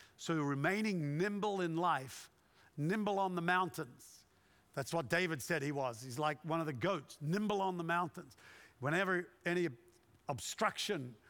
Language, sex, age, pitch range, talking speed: English, male, 50-69, 140-190 Hz, 150 wpm